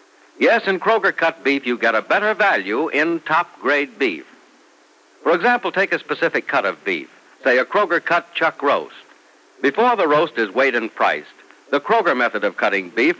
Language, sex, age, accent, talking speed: English, male, 60-79, American, 180 wpm